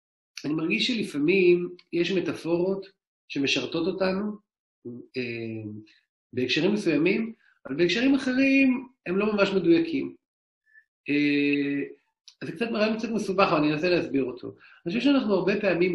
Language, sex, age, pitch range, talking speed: English, male, 40-59, 165-265 Hz, 120 wpm